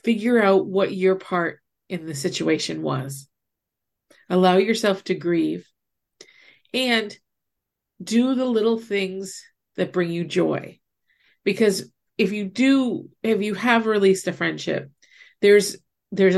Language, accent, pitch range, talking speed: English, American, 175-200 Hz, 125 wpm